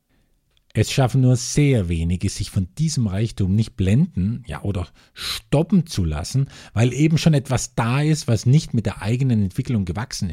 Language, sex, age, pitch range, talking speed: German, male, 50-69, 95-135 Hz, 165 wpm